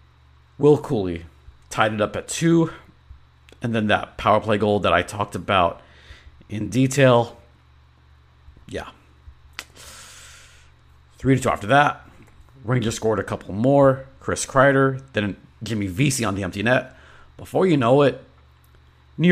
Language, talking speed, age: English, 135 wpm, 40-59